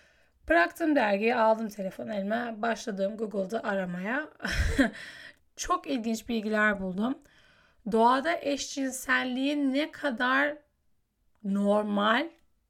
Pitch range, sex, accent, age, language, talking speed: 210-280 Hz, female, native, 10-29, Turkish, 80 wpm